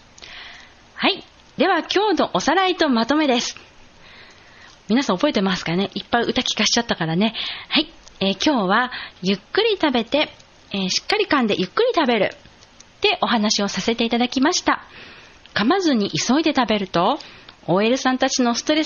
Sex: female